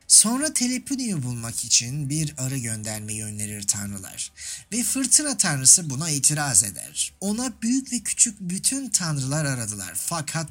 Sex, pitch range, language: male, 115-185 Hz, Turkish